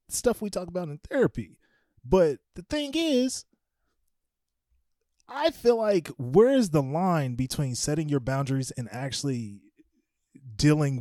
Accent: American